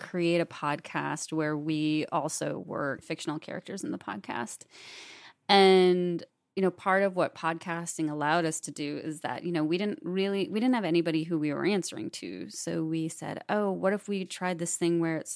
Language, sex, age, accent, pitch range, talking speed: English, female, 30-49, American, 155-185 Hz, 200 wpm